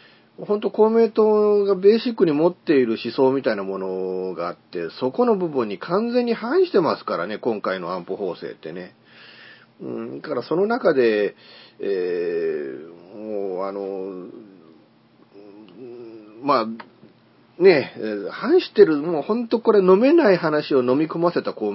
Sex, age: male, 40-59